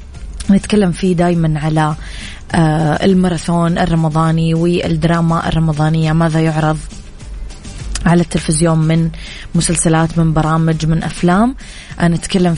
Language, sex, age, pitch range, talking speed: Arabic, female, 20-39, 155-175 Hz, 90 wpm